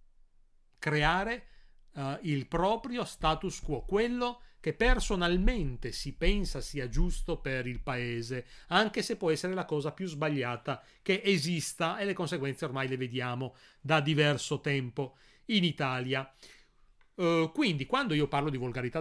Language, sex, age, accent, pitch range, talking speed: Italian, male, 30-49, native, 130-180 Hz, 135 wpm